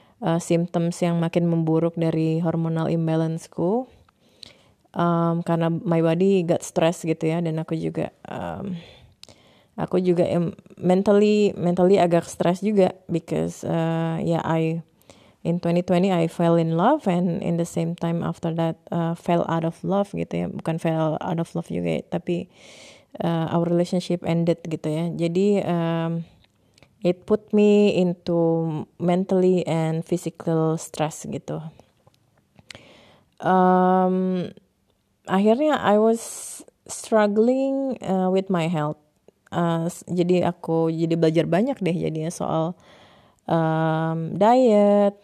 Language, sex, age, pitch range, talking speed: English, female, 20-39, 165-185 Hz, 130 wpm